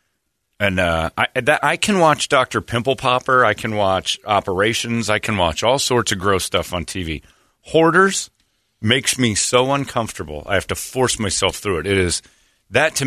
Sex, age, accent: male, 40-59, American